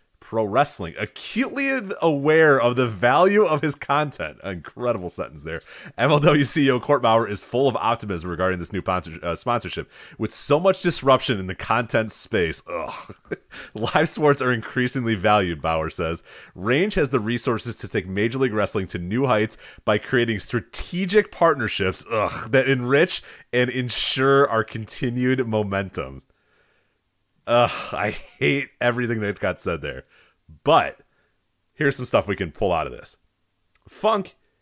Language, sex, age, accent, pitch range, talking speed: English, male, 30-49, American, 95-135 Hz, 145 wpm